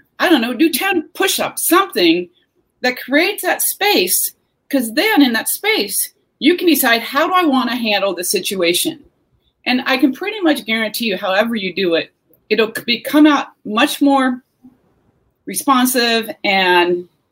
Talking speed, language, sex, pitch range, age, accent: 155 wpm, English, female, 205-305 Hz, 40-59, American